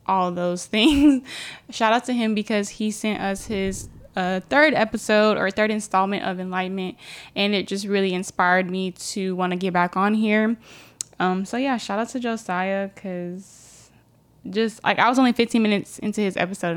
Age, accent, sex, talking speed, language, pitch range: 10-29, American, female, 185 wpm, English, 185-240 Hz